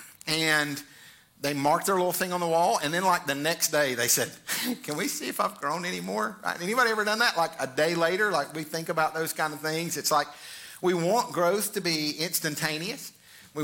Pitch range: 135-165 Hz